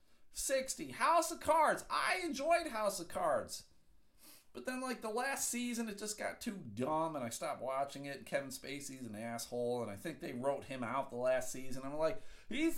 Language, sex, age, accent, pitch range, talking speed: English, male, 50-69, American, 155-235 Hz, 200 wpm